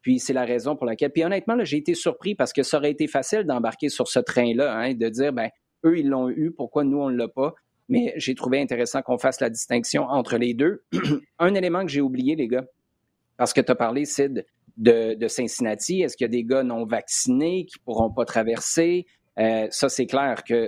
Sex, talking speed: male, 235 wpm